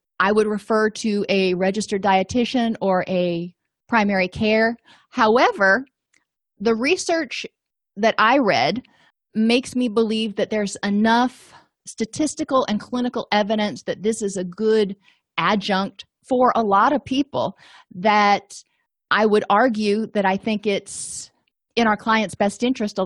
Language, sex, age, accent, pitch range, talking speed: English, female, 30-49, American, 185-230 Hz, 135 wpm